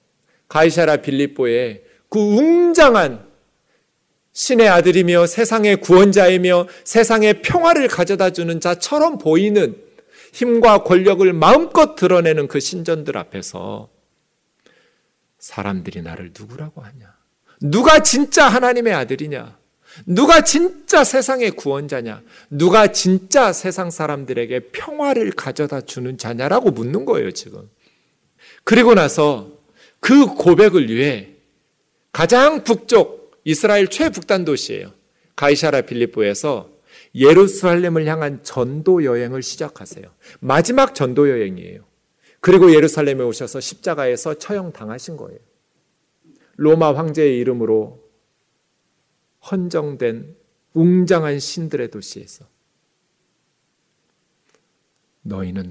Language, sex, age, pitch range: Korean, male, 40-59, 140-225 Hz